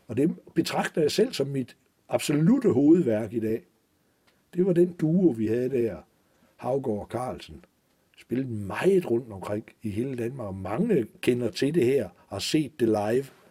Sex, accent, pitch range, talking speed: male, native, 110-140 Hz, 175 wpm